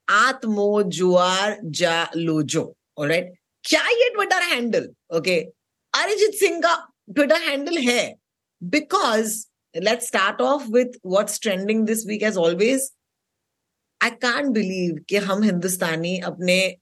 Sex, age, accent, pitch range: female, 20-39, native, 180-255 Hz